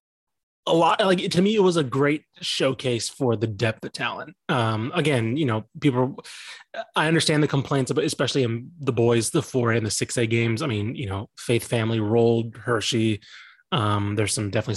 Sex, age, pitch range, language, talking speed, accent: male, 20-39, 110-140 Hz, English, 200 wpm, American